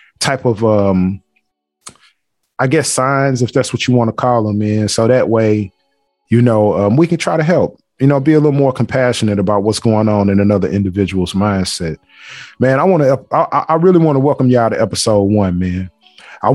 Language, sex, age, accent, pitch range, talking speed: English, male, 30-49, American, 110-140 Hz, 205 wpm